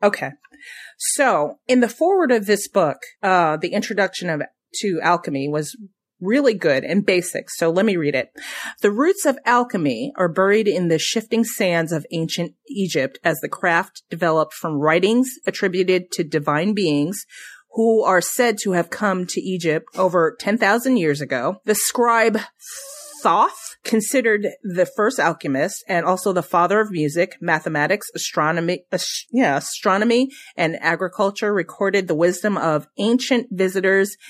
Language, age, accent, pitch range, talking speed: English, 30-49, American, 165-225 Hz, 150 wpm